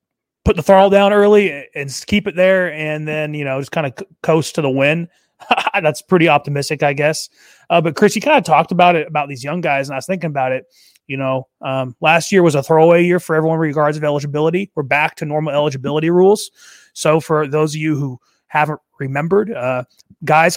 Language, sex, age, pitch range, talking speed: English, male, 30-49, 140-180 Hz, 215 wpm